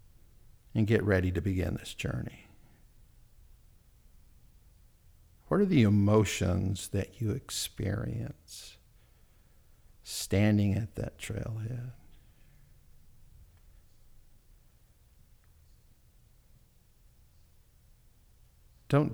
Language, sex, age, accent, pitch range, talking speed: English, male, 50-69, American, 90-120 Hz, 60 wpm